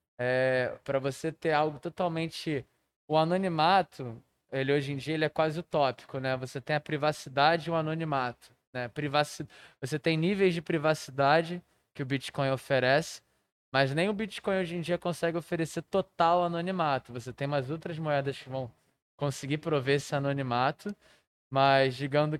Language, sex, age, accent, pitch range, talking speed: Portuguese, male, 20-39, Brazilian, 135-160 Hz, 155 wpm